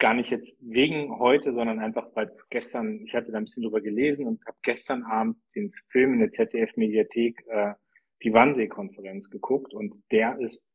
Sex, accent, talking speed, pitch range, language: male, German, 180 wpm, 110-145 Hz, German